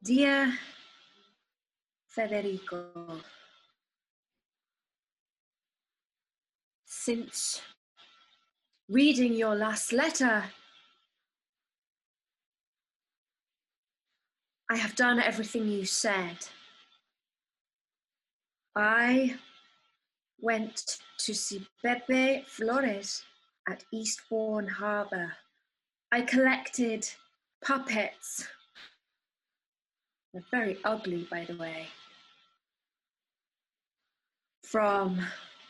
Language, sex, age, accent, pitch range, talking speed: English, female, 30-49, British, 210-280 Hz, 55 wpm